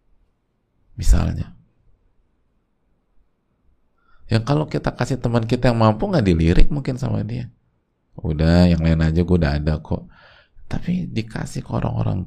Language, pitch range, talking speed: Indonesian, 90-125 Hz, 125 wpm